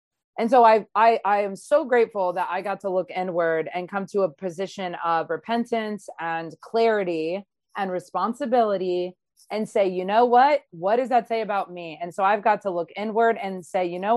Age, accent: 30-49, American